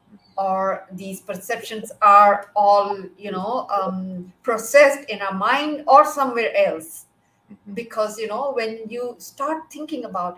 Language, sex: English, female